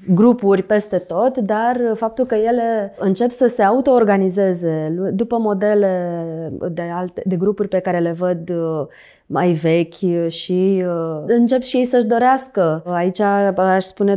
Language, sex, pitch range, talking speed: Romanian, female, 180-215 Hz, 135 wpm